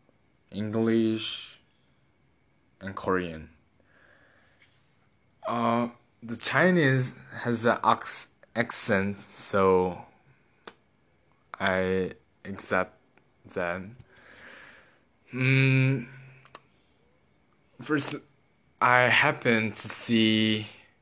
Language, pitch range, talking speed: English, 100-120 Hz, 55 wpm